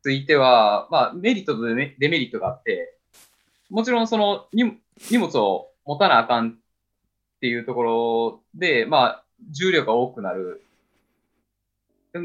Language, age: Japanese, 20-39